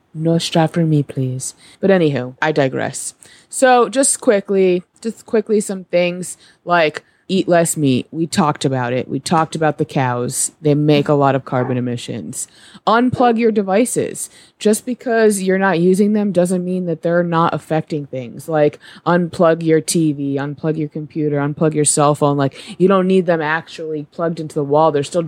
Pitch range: 150-195 Hz